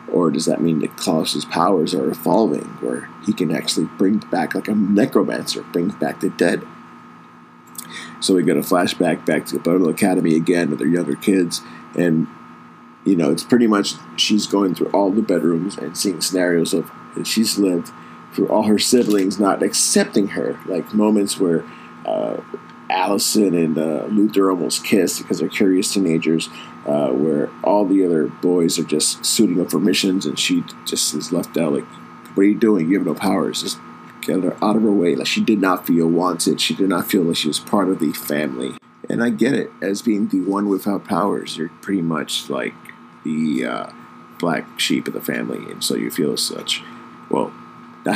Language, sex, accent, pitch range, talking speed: English, male, American, 80-100 Hz, 195 wpm